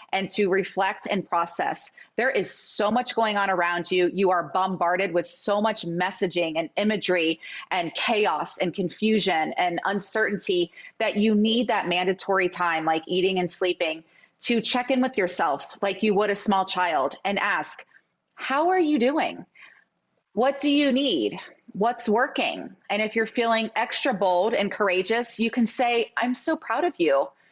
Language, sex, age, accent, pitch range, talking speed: English, female, 30-49, American, 185-235 Hz, 170 wpm